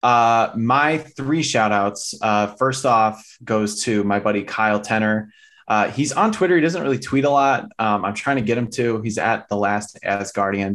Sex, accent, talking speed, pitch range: male, American, 205 wpm, 100-115 Hz